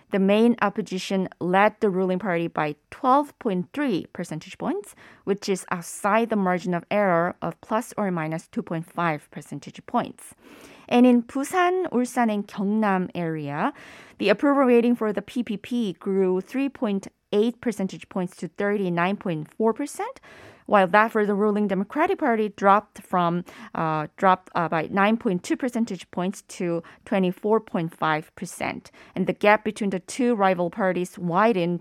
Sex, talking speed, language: female, 130 wpm, English